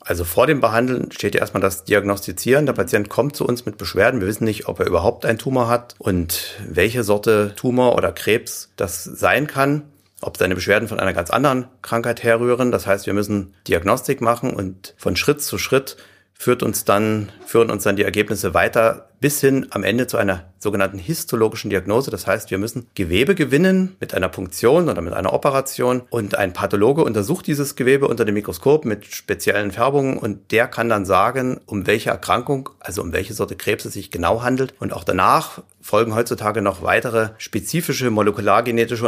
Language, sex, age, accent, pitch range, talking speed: German, male, 40-59, German, 100-125 Hz, 190 wpm